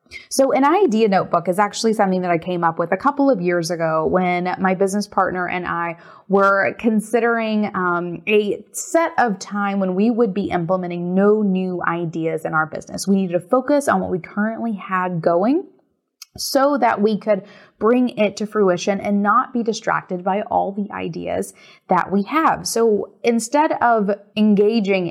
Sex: female